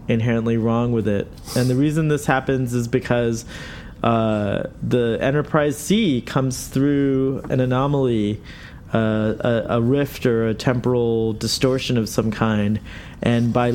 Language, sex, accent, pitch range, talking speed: English, male, American, 115-135 Hz, 140 wpm